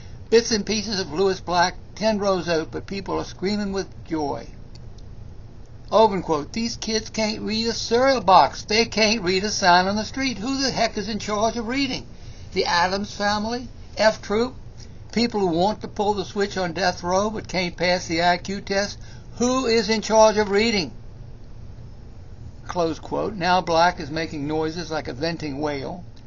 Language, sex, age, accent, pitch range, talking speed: English, male, 60-79, American, 155-205 Hz, 180 wpm